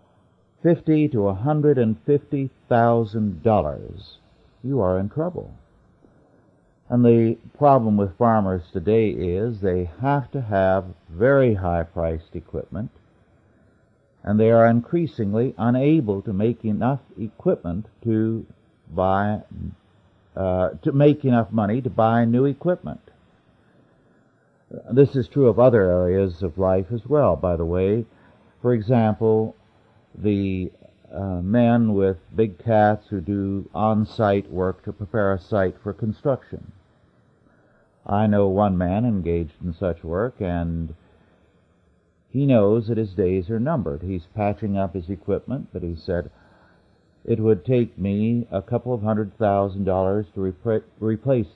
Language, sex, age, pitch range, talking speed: English, male, 50-69, 95-115 Hz, 135 wpm